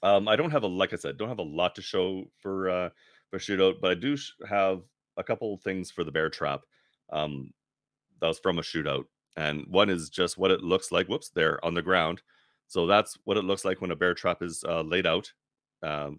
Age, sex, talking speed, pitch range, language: 30-49, male, 235 wpm, 85-120 Hz, English